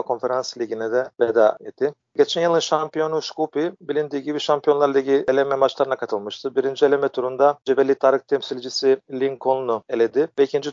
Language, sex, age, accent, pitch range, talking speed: Turkish, male, 40-59, native, 130-150 Hz, 140 wpm